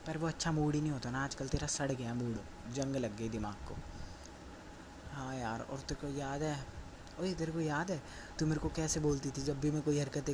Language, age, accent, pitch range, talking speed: Hindi, 20-39, native, 90-150 Hz, 230 wpm